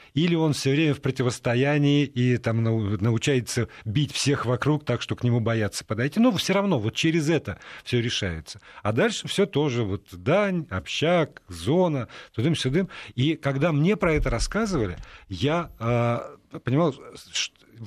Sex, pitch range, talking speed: male, 110-155 Hz, 150 wpm